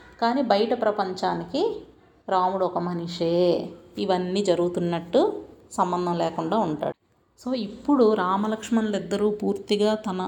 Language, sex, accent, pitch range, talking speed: Telugu, female, native, 185-225 Hz, 95 wpm